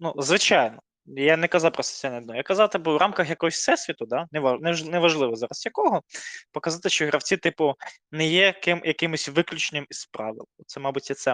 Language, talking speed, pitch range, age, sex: Ukrainian, 195 wpm, 140-175 Hz, 20-39, male